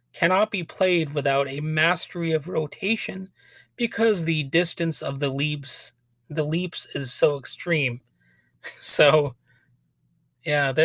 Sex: male